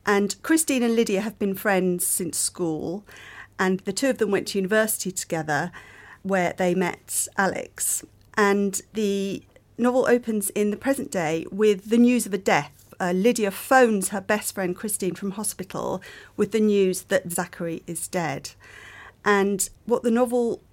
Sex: female